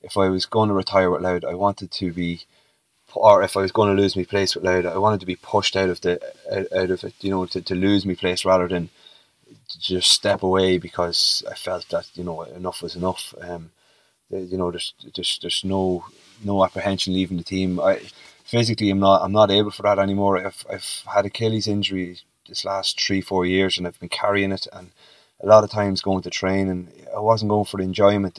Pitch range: 90-100 Hz